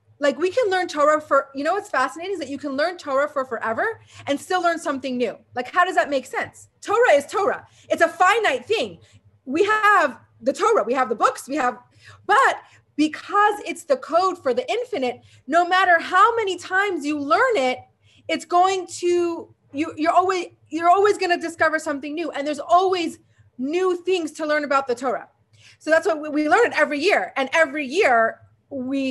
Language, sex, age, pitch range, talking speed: English, female, 30-49, 255-350 Hz, 200 wpm